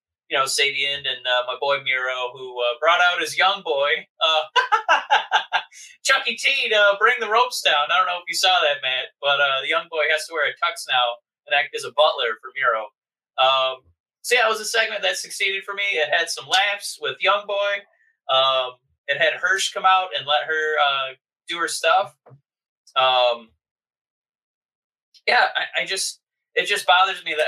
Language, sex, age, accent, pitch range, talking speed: English, male, 30-49, American, 140-225 Hz, 200 wpm